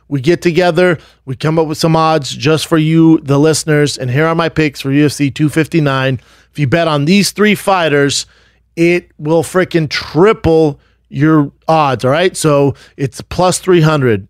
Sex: male